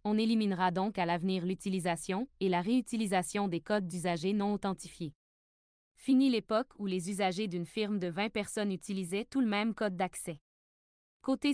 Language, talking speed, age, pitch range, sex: French, 160 wpm, 20-39, 180-220 Hz, female